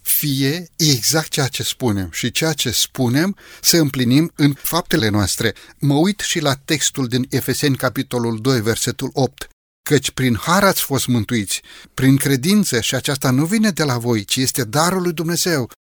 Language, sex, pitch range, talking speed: Romanian, male, 125-160 Hz, 165 wpm